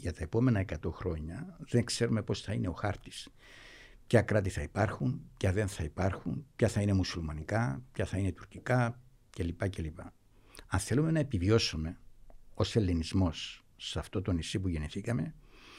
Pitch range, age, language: 95-120 Hz, 60-79, Greek